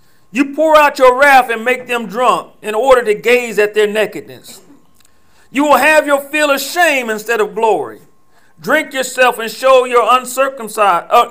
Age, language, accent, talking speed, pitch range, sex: 40-59, English, American, 170 wpm, 220-280 Hz, male